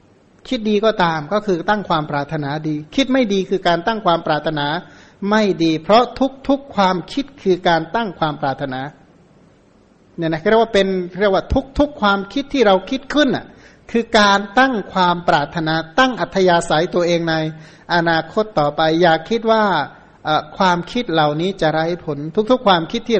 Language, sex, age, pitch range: Thai, male, 60-79, 160-205 Hz